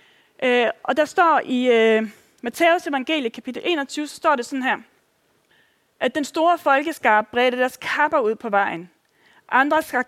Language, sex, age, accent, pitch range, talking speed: Danish, female, 30-49, native, 240-310 Hz, 160 wpm